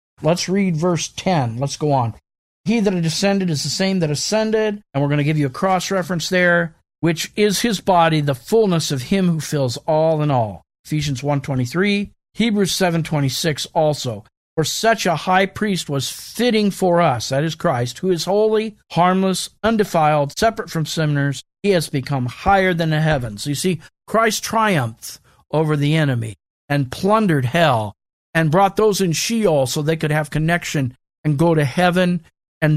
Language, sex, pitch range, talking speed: English, male, 135-180 Hz, 175 wpm